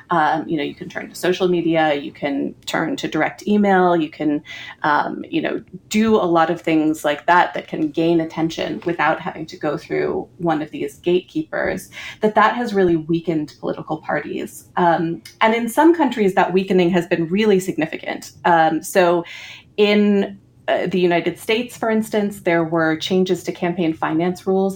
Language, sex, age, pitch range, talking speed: English, female, 30-49, 165-195 Hz, 180 wpm